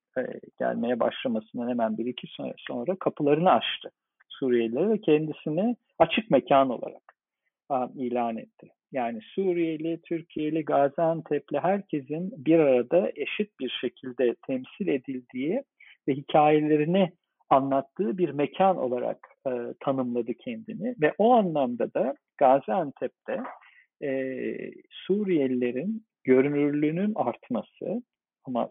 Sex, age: male, 50-69